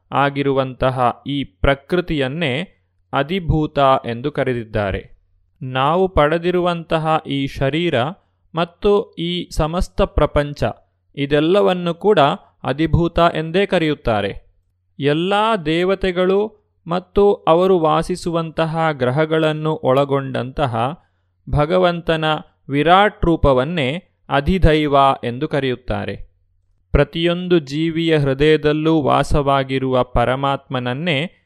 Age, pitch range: 30-49, 130-170 Hz